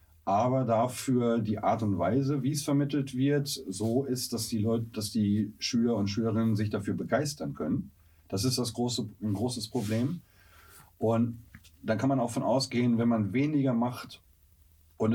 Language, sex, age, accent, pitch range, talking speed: German, male, 40-59, German, 100-125 Hz, 170 wpm